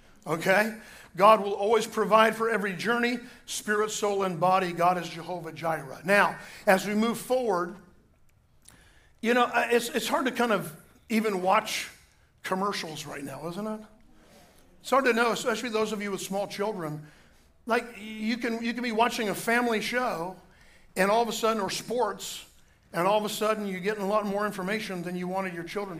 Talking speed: 185 wpm